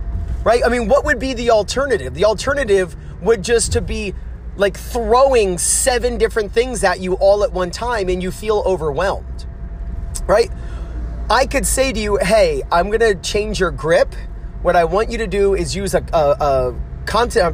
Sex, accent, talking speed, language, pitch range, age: male, American, 185 wpm, English, 170-220 Hz, 30-49